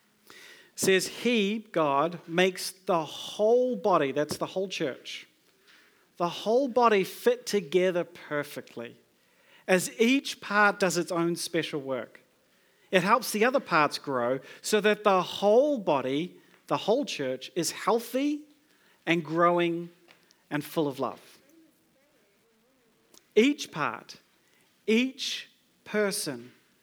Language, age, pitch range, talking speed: English, 40-59, 160-215 Hz, 115 wpm